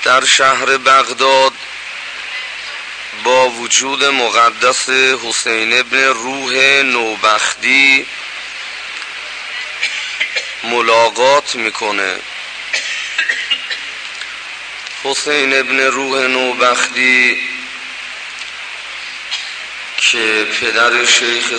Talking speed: 55 wpm